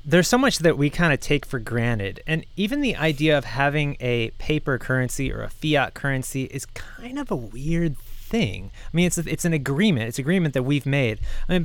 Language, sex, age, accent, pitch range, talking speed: English, male, 20-39, American, 120-160 Hz, 225 wpm